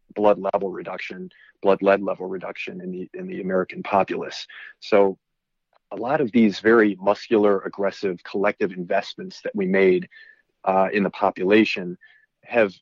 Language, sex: English, male